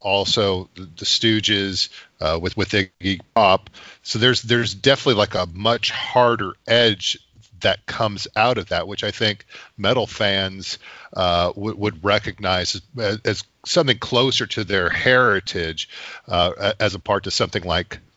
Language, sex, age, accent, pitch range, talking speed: English, male, 40-59, American, 95-110 Hz, 150 wpm